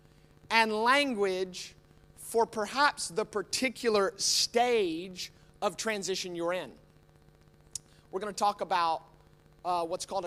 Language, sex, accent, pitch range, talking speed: English, male, American, 135-185 Hz, 110 wpm